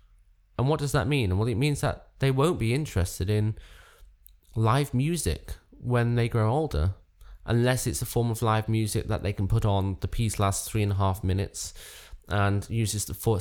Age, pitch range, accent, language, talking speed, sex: 20-39, 95-120 Hz, British, English, 195 wpm, male